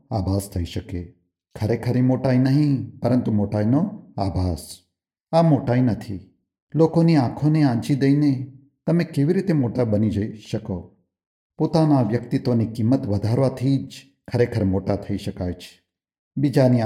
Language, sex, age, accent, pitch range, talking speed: Gujarati, male, 50-69, native, 100-135 Hz, 120 wpm